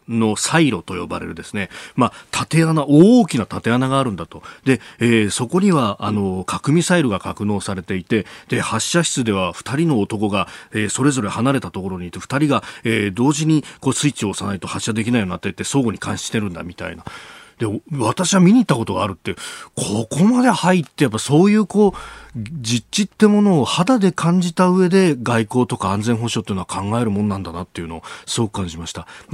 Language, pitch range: Japanese, 100-145 Hz